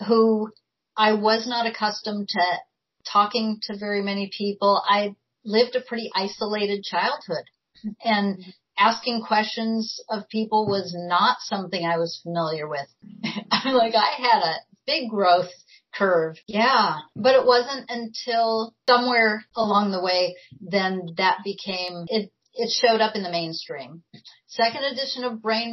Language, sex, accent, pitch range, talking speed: English, female, American, 195-225 Hz, 140 wpm